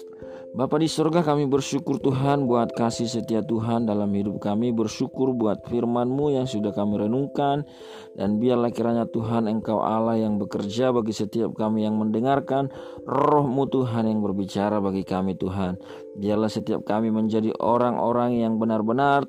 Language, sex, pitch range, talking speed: Indonesian, male, 110-130 Hz, 145 wpm